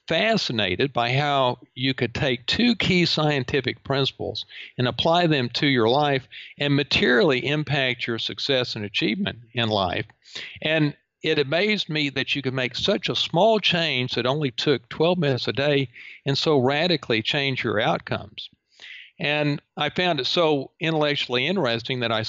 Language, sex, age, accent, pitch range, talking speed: English, male, 50-69, American, 120-150 Hz, 160 wpm